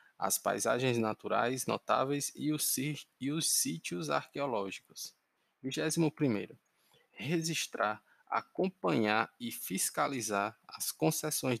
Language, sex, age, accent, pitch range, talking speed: Portuguese, male, 20-39, Brazilian, 110-150 Hz, 90 wpm